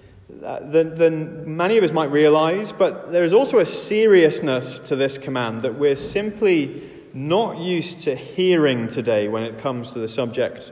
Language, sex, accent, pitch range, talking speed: English, male, British, 120-170 Hz, 170 wpm